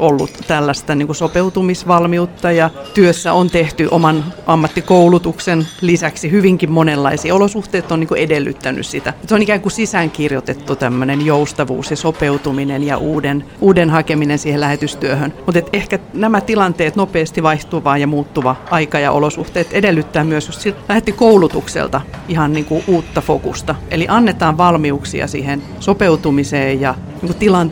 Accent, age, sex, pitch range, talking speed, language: native, 40-59, female, 150-185 Hz, 135 wpm, Finnish